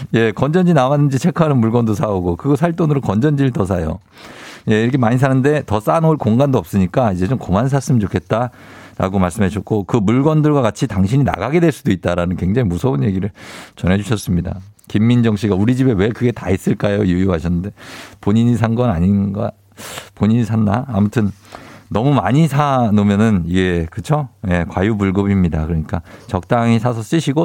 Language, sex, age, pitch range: Korean, male, 50-69, 100-150 Hz